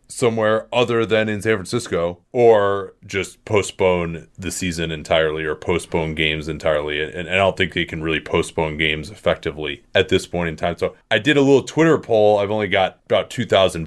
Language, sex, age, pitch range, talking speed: English, male, 30-49, 85-105 Hz, 195 wpm